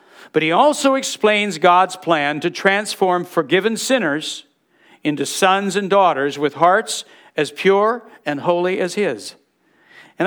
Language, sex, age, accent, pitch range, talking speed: English, male, 60-79, American, 170-220 Hz, 135 wpm